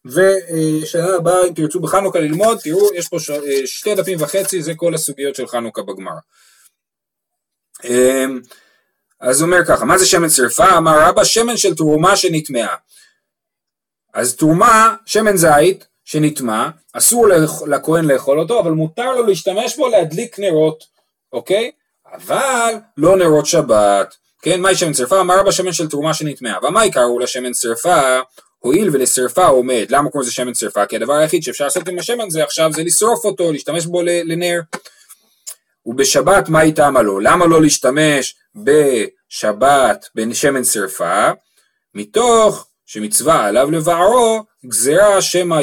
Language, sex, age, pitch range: Hebrew, male, 30-49, 145-195 Hz